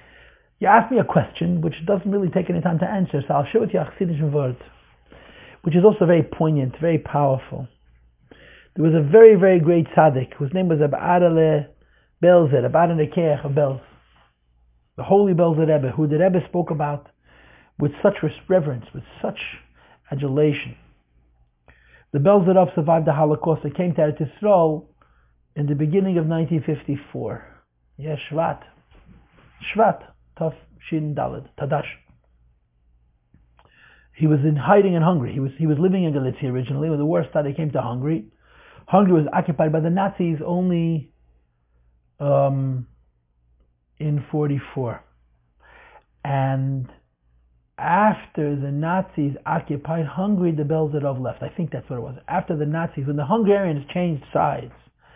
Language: English